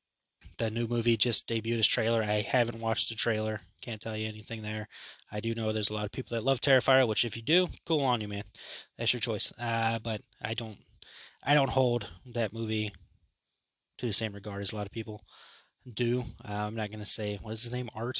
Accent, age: American, 20-39